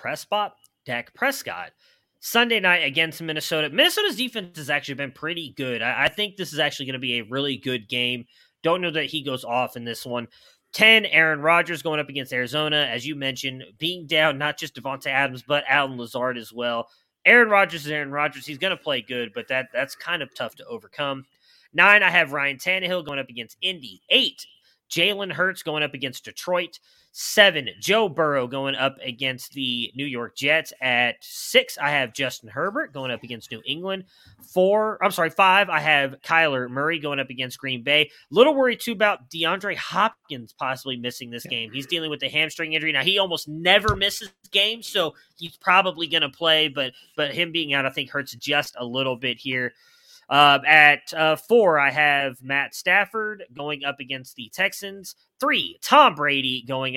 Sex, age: male, 30-49